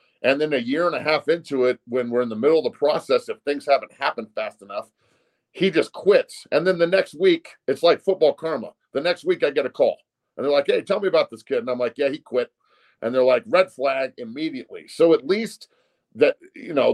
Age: 40-59